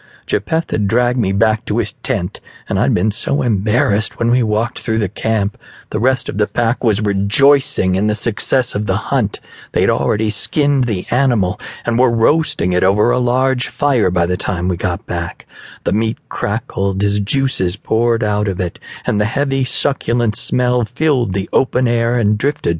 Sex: male